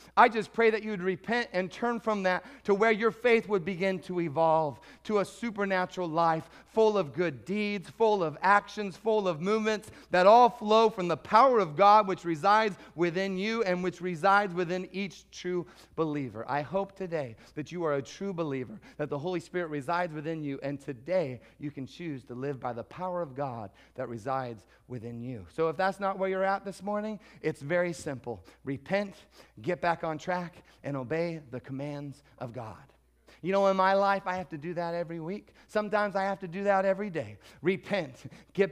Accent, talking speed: American, 200 wpm